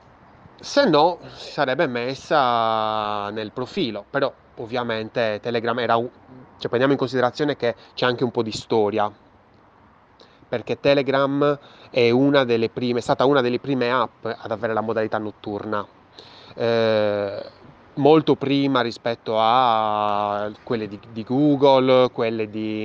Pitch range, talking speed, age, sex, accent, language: 110-130 Hz, 130 wpm, 20-39, male, native, Italian